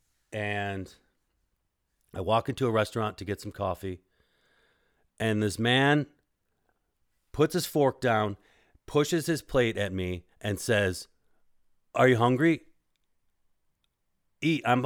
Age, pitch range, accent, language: 40-59, 95-125 Hz, American, English